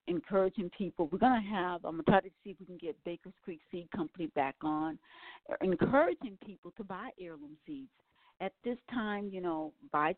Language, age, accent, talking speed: English, 50-69, American, 200 wpm